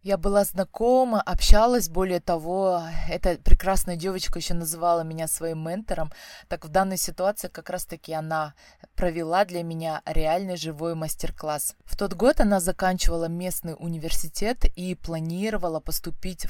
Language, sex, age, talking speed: Russian, female, 20-39, 140 wpm